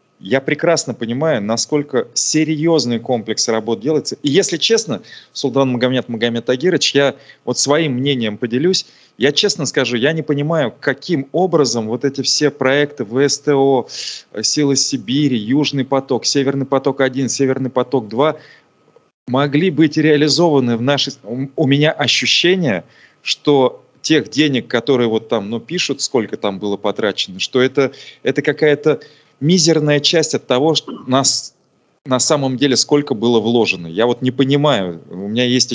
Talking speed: 140 wpm